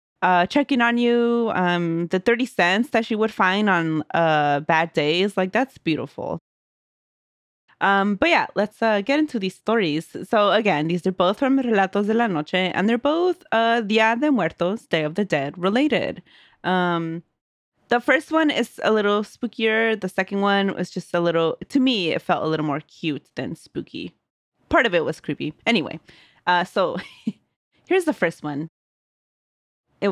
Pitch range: 170-225 Hz